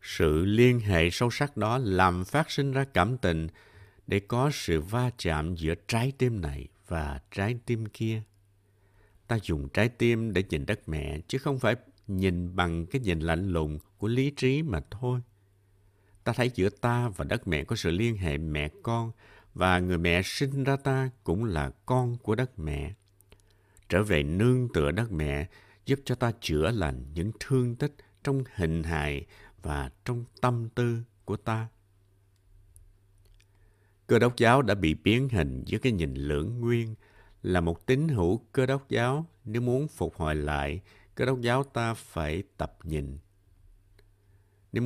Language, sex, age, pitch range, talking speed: Vietnamese, male, 60-79, 85-120 Hz, 170 wpm